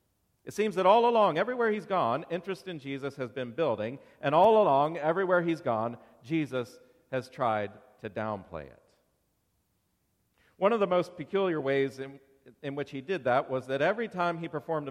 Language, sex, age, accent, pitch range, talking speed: English, male, 40-59, American, 115-155 Hz, 175 wpm